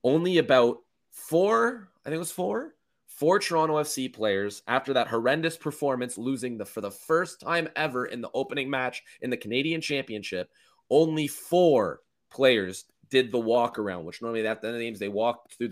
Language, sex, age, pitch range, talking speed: English, male, 20-39, 115-145 Hz, 175 wpm